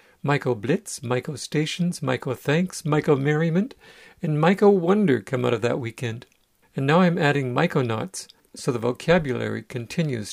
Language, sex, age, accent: English, male, 50-69, American